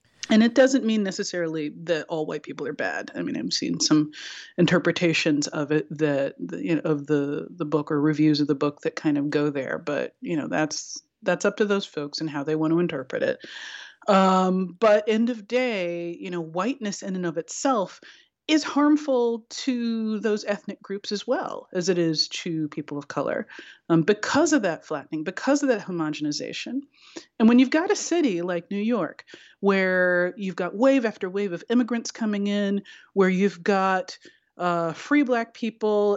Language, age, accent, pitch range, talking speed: English, 30-49, American, 165-225 Hz, 190 wpm